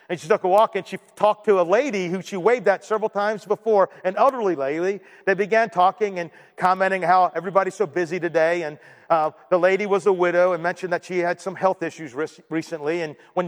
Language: English